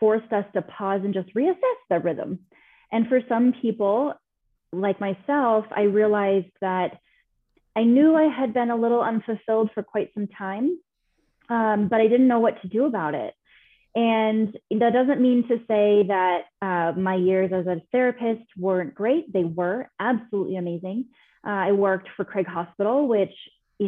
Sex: female